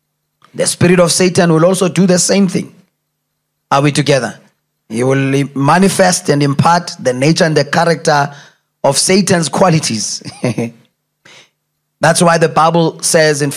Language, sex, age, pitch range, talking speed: English, male, 30-49, 140-170 Hz, 140 wpm